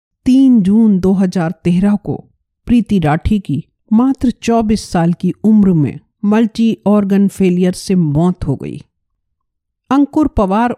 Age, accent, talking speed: 50-69, native, 120 wpm